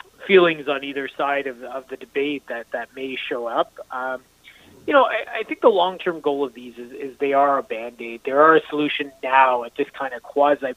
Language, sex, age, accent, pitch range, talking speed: English, male, 20-39, American, 125-155 Hz, 240 wpm